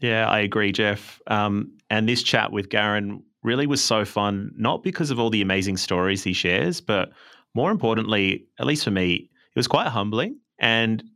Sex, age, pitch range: male, 30-49, 100-115 Hz